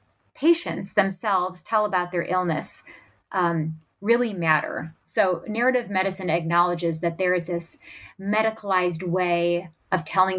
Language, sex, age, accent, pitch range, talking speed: English, female, 30-49, American, 170-200 Hz, 120 wpm